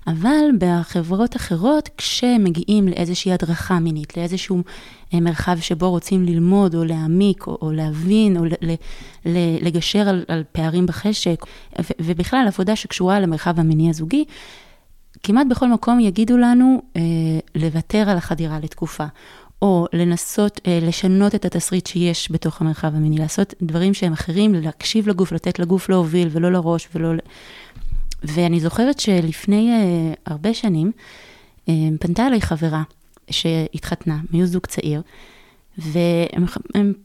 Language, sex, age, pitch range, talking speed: Hebrew, female, 20-39, 165-205 Hz, 130 wpm